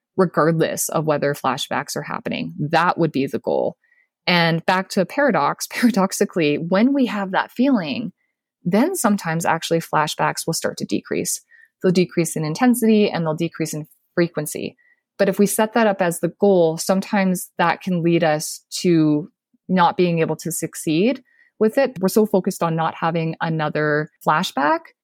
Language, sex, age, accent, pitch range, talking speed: English, female, 20-39, American, 160-225 Hz, 165 wpm